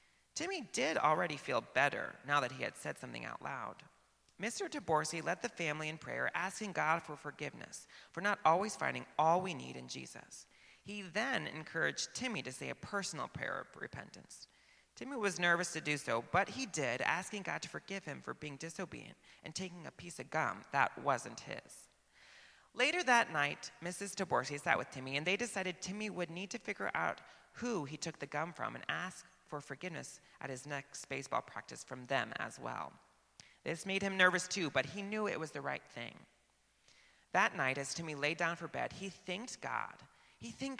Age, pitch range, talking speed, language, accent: 30-49, 145-200 Hz, 195 wpm, English, American